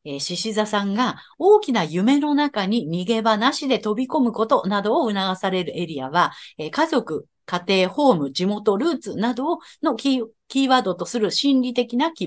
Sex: female